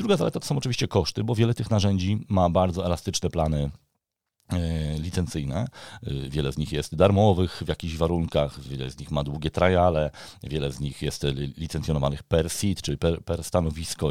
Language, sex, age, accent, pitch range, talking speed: Polish, male, 40-59, native, 75-105 Hz, 170 wpm